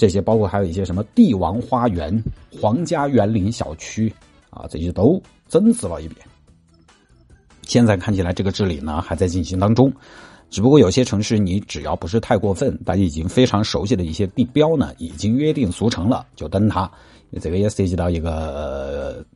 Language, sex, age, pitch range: Chinese, male, 50-69, 85-120 Hz